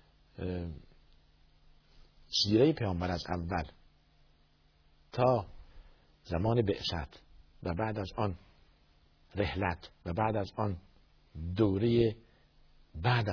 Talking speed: 85 wpm